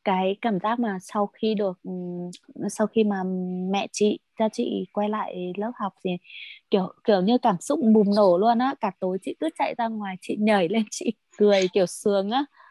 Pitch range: 195-235 Hz